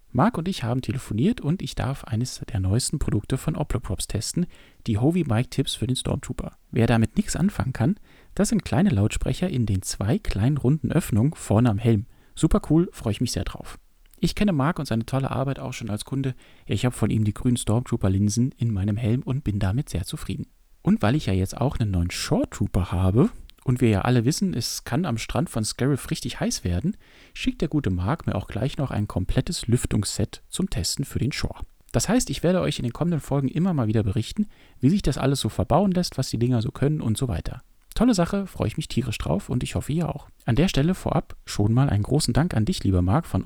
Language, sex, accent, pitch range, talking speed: German, male, German, 110-150 Hz, 230 wpm